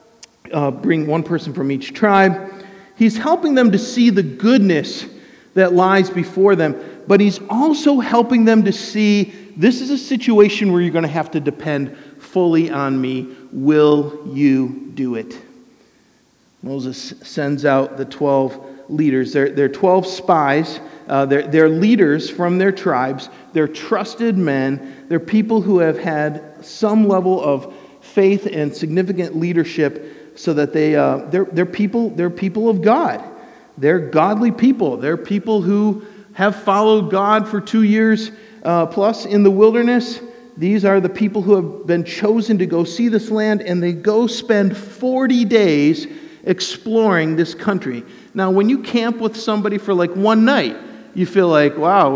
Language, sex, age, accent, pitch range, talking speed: English, male, 50-69, American, 155-220 Hz, 160 wpm